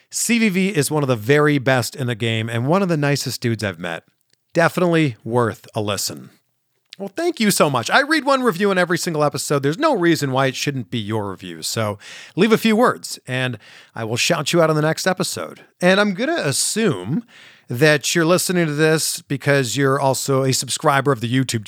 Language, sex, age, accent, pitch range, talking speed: English, male, 40-59, American, 130-190 Hz, 210 wpm